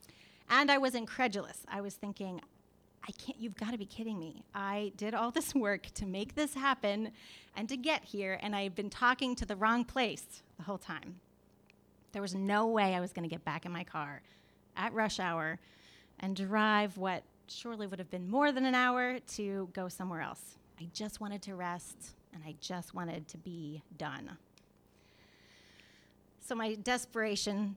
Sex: female